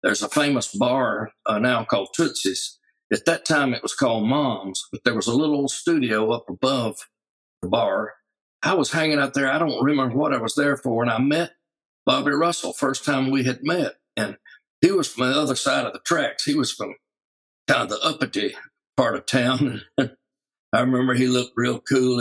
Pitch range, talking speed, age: 125-145 Hz, 205 wpm, 60-79